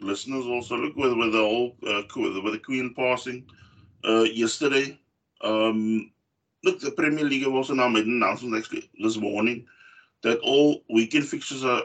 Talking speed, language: 165 wpm, English